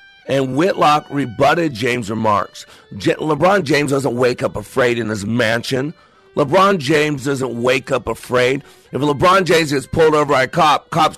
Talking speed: 165 wpm